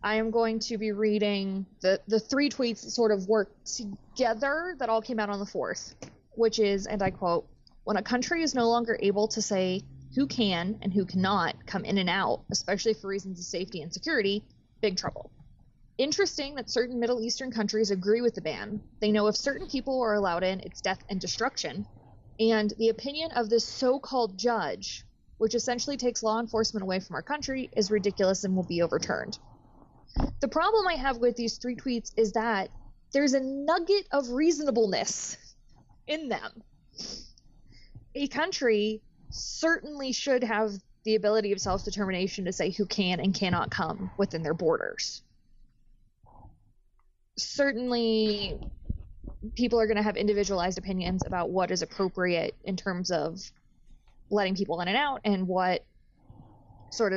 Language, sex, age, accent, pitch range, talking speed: English, female, 20-39, American, 190-245 Hz, 165 wpm